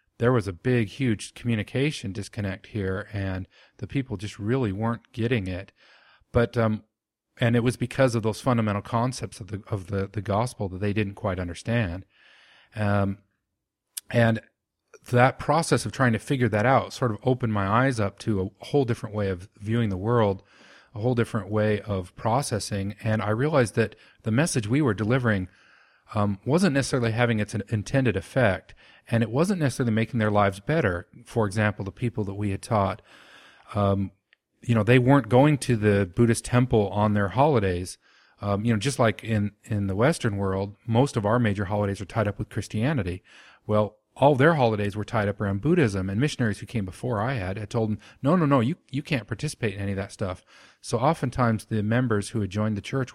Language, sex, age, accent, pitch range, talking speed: English, male, 40-59, American, 100-125 Hz, 195 wpm